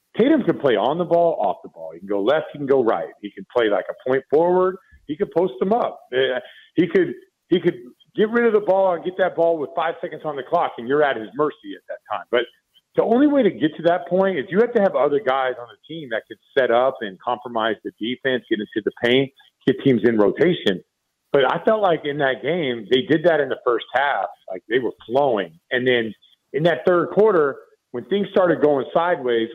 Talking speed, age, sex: 245 wpm, 50-69, male